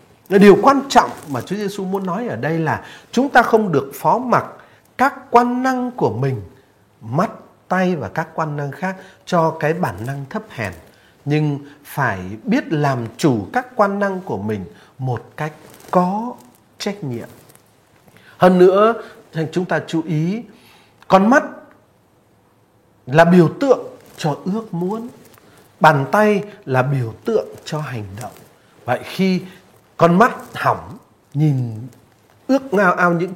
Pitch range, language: 135-205 Hz, Vietnamese